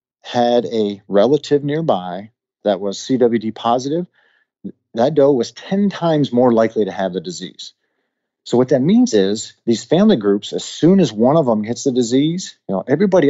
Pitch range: 110-145 Hz